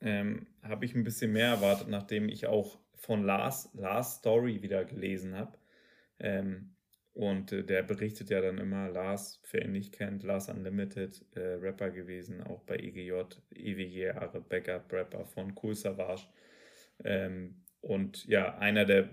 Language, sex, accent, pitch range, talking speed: German, male, German, 95-115 Hz, 150 wpm